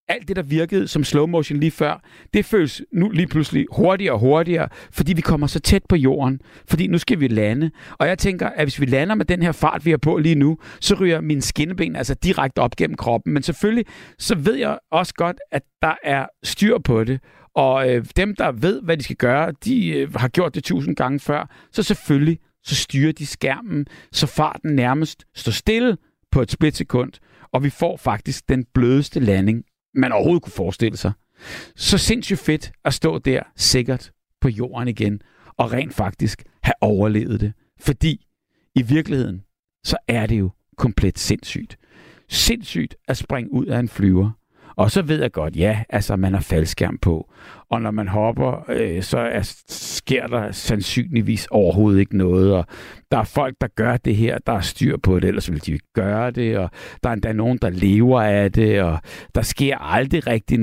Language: Danish